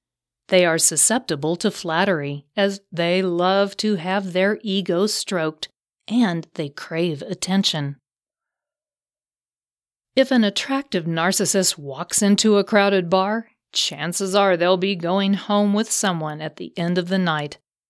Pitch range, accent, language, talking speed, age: 175-215 Hz, American, English, 135 wpm, 40-59